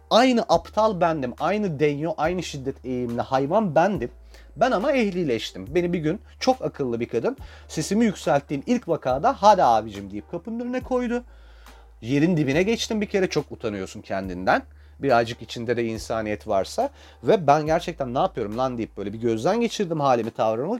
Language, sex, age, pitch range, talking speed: Turkish, male, 40-59, 125-200 Hz, 160 wpm